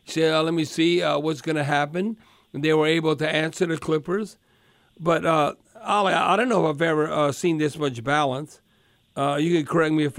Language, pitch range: English, 155-190 Hz